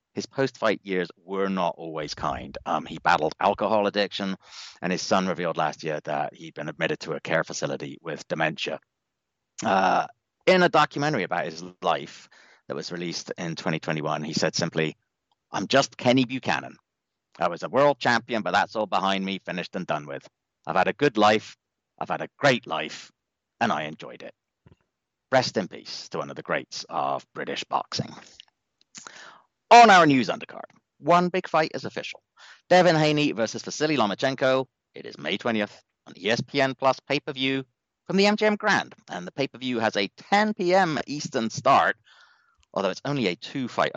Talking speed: 175 wpm